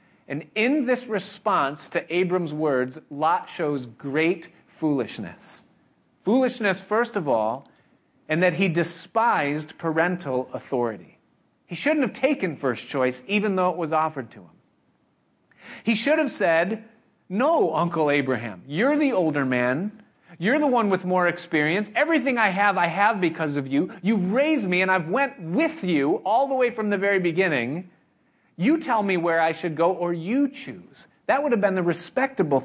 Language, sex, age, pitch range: English, male, 40-59, 150-210 Hz